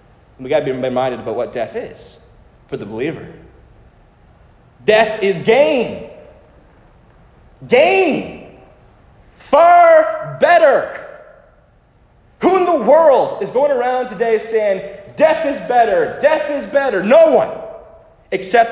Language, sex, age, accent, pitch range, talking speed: English, male, 30-49, American, 140-215 Hz, 115 wpm